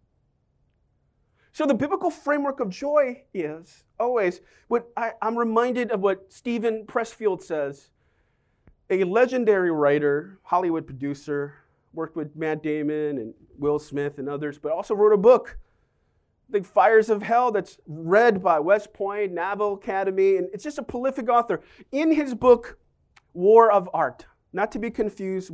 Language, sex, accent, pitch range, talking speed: English, male, American, 160-255 Hz, 150 wpm